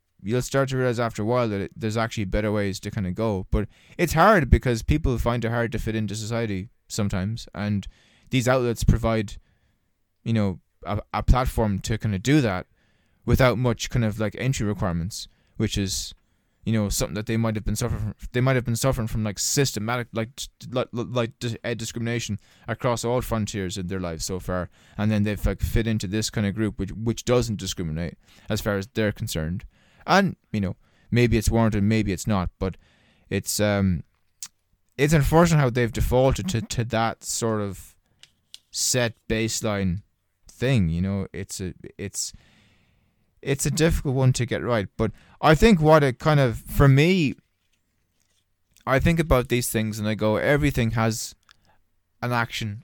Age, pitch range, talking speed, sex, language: 20-39, 95-120 Hz, 180 wpm, male, English